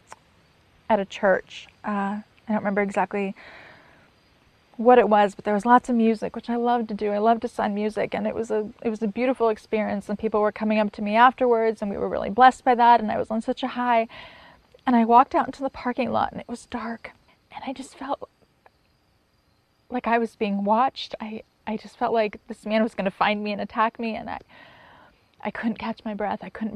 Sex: female